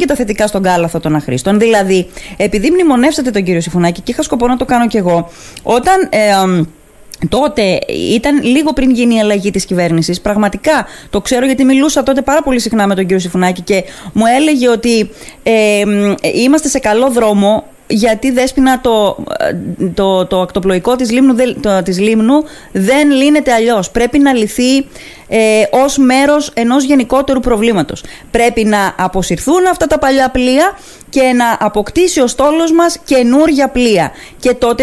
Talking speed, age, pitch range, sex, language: 165 wpm, 20-39, 200-275 Hz, female, Greek